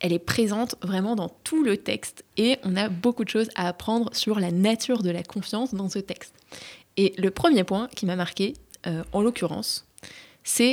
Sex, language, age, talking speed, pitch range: female, French, 20-39, 200 wpm, 180-240 Hz